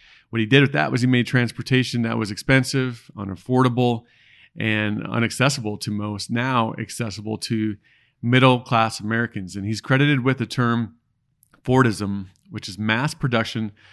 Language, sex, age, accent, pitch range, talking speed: English, male, 40-59, American, 110-125 Hz, 140 wpm